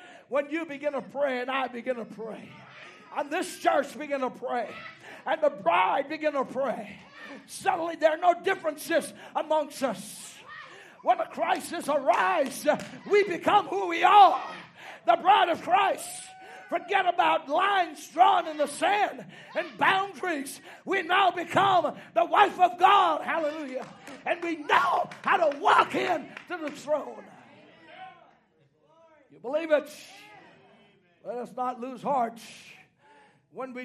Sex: male